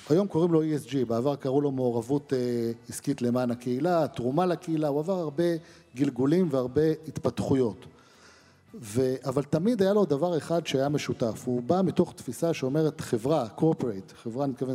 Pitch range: 130-170 Hz